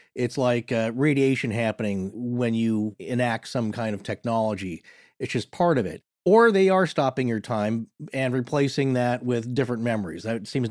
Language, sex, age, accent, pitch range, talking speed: English, male, 40-59, American, 120-160 Hz, 175 wpm